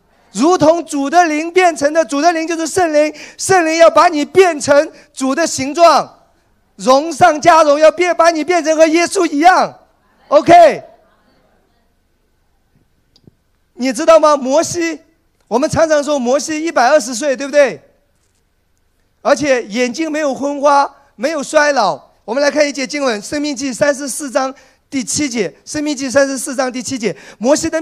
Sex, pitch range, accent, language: male, 195-300 Hz, native, Chinese